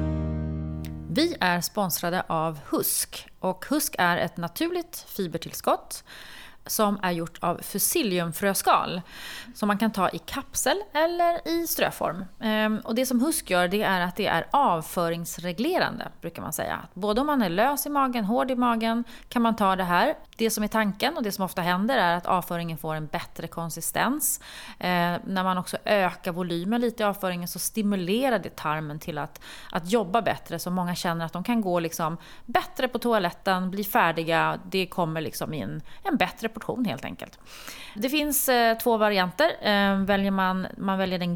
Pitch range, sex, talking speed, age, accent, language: 175-230 Hz, female, 175 wpm, 30-49, native, Swedish